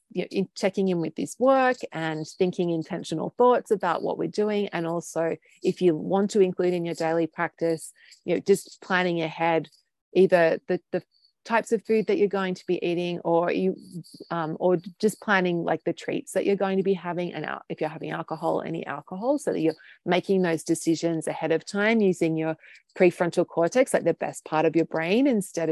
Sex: female